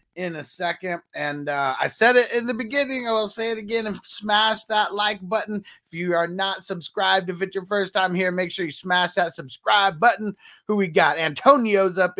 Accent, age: American, 30-49